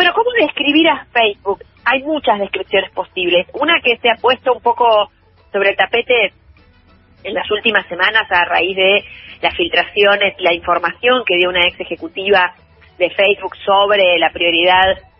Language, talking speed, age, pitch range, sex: Spanish, 160 wpm, 30-49, 180-220 Hz, female